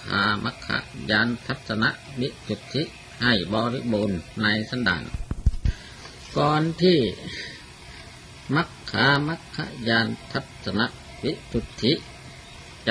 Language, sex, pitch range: Thai, male, 105-140 Hz